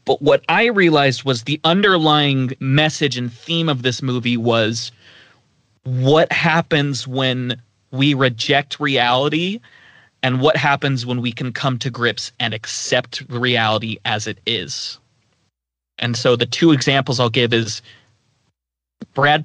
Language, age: English, 30-49